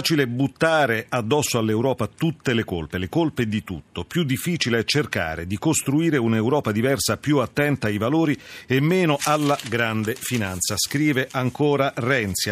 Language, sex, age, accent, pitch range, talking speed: Italian, male, 40-59, native, 105-145 Hz, 155 wpm